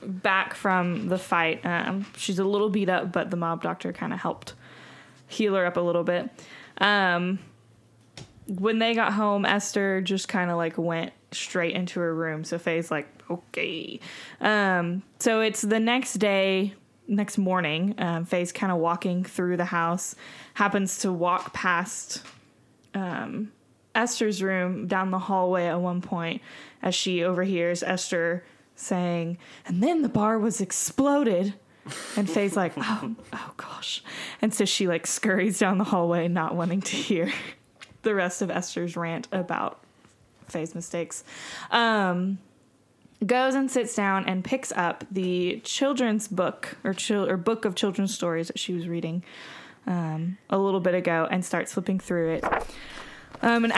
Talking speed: 160 wpm